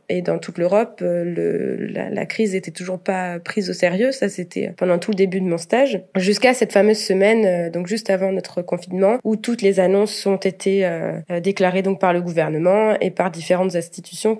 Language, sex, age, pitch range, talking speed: French, female, 20-39, 180-215 Hz, 195 wpm